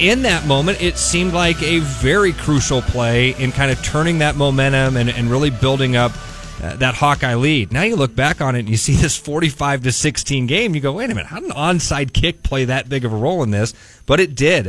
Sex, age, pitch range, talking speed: male, 30-49, 110-145 Hz, 245 wpm